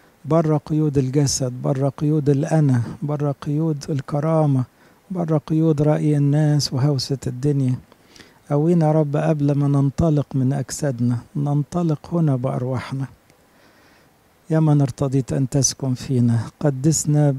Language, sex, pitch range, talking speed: English, male, 135-150 Hz, 110 wpm